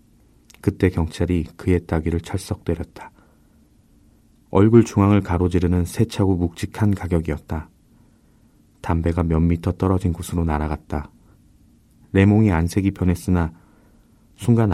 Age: 30-49